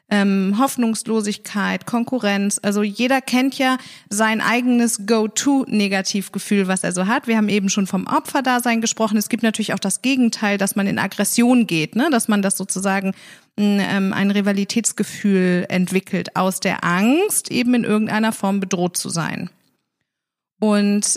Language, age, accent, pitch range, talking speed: German, 30-49, German, 195-225 Hz, 155 wpm